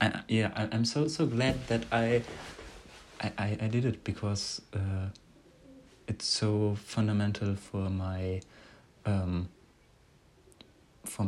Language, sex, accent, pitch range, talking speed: German, male, German, 95-110 Hz, 115 wpm